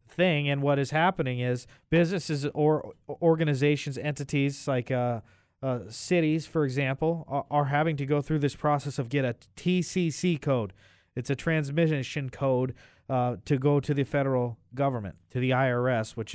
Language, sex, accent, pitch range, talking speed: English, male, American, 120-145 Hz, 160 wpm